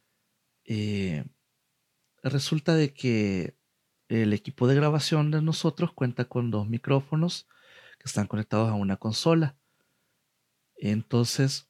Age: 40-59